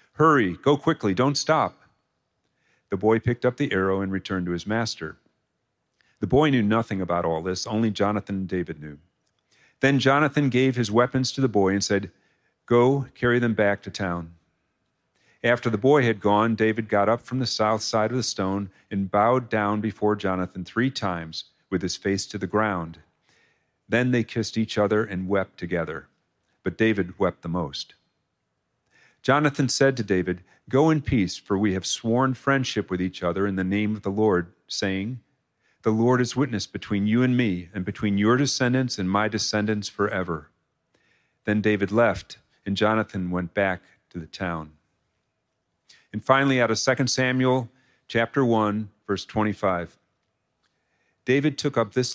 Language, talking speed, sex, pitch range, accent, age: English, 170 wpm, male, 95-120 Hz, American, 50-69